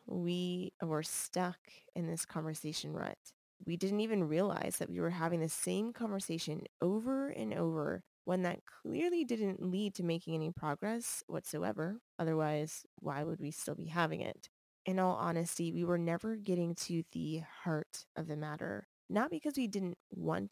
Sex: female